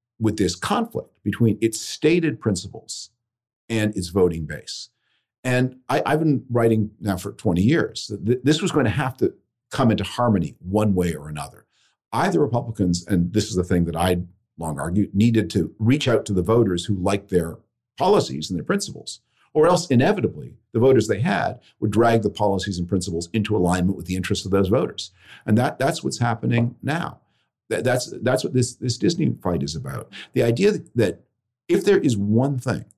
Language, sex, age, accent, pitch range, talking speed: English, male, 50-69, American, 90-120 Hz, 190 wpm